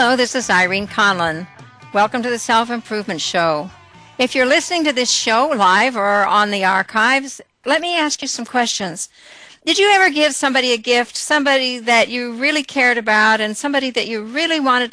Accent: American